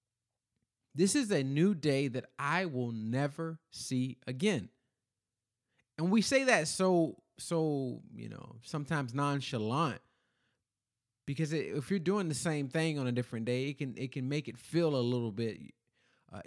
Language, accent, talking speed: English, American, 155 wpm